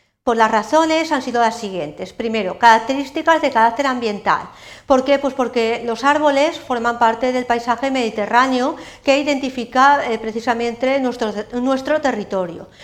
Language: Spanish